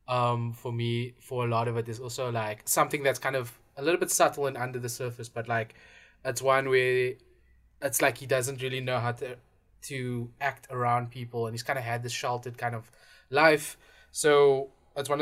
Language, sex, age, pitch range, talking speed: English, male, 20-39, 115-135 Hz, 210 wpm